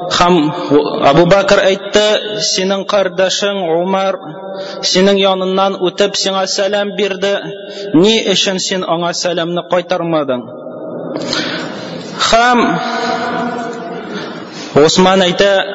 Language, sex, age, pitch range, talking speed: Russian, male, 30-49, 170-215 Hz, 70 wpm